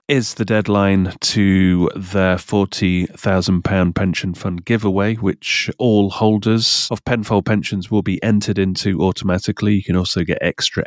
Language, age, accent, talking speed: English, 30-49, British, 140 wpm